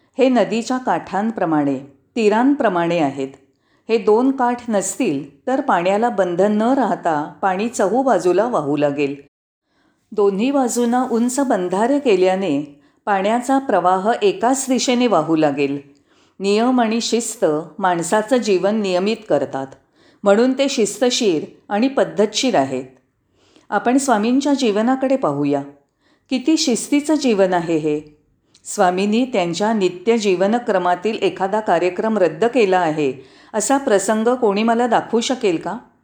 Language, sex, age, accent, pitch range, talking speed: Marathi, female, 40-59, native, 175-240 Hz, 115 wpm